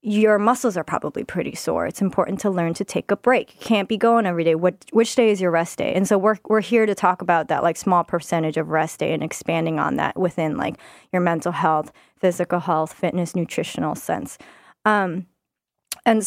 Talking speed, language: 215 wpm, English